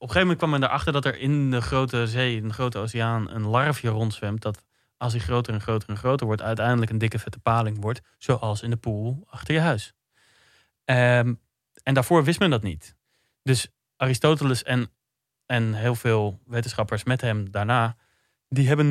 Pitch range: 115-135 Hz